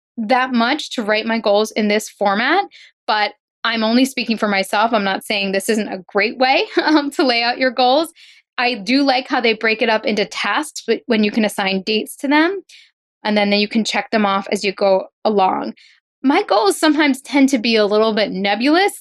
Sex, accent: female, American